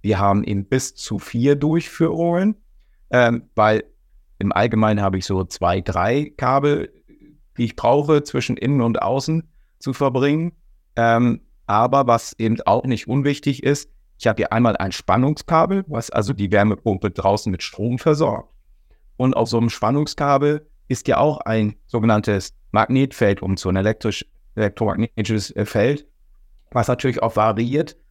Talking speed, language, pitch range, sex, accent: 145 wpm, German, 105-135 Hz, male, German